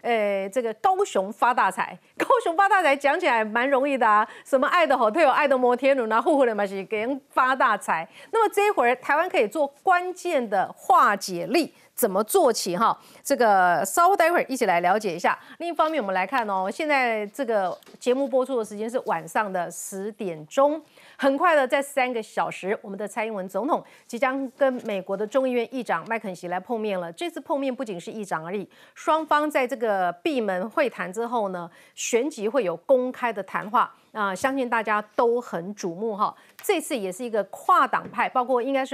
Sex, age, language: female, 30-49, Chinese